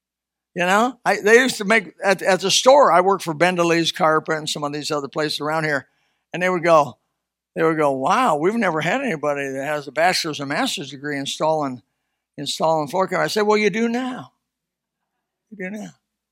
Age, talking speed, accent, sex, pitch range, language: 60-79, 205 wpm, American, male, 150-230 Hz, English